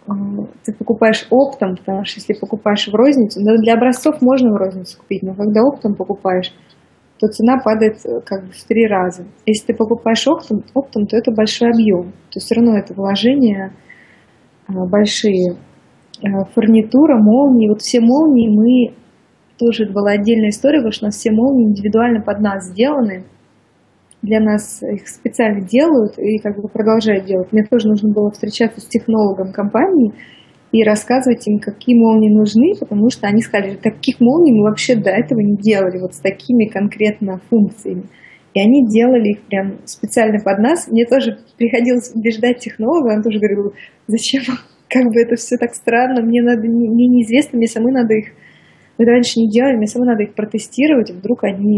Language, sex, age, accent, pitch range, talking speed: Russian, female, 20-39, native, 205-240 Hz, 170 wpm